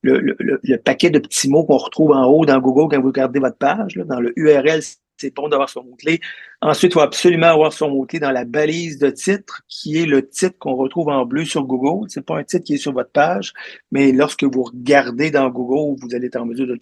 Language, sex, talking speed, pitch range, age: French, male, 255 wpm, 130-160 Hz, 50-69